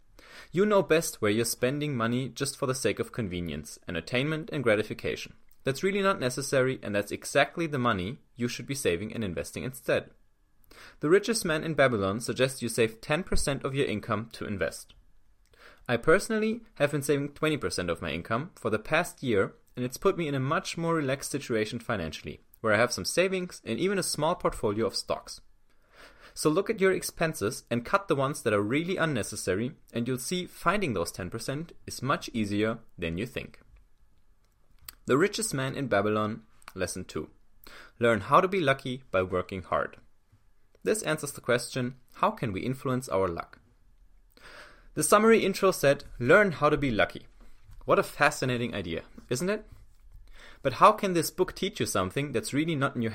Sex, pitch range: male, 110-160 Hz